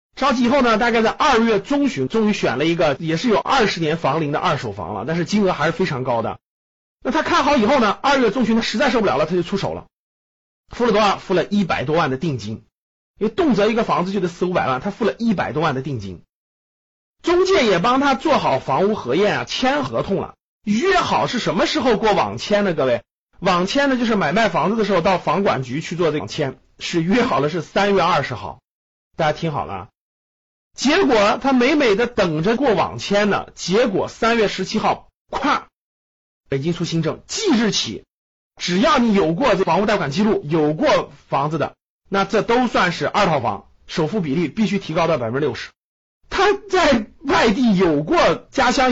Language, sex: Chinese, male